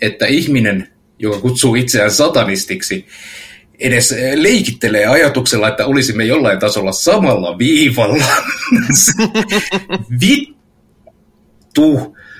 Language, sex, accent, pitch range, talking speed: Finnish, male, native, 105-160 Hz, 75 wpm